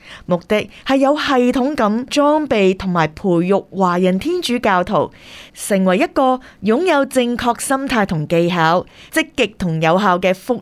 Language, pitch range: Chinese, 185-250 Hz